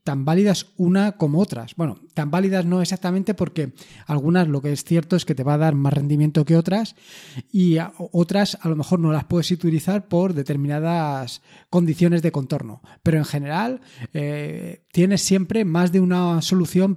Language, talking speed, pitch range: Spanish, 175 wpm, 150-185 Hz